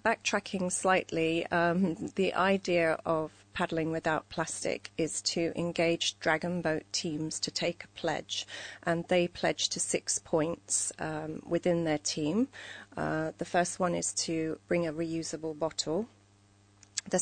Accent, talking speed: British, 140 wpm